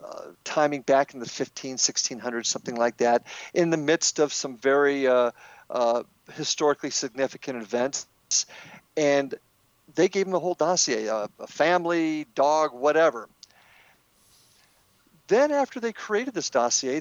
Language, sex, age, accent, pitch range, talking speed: English, male, 50-69, American, 135-205 Hz, 140 wpm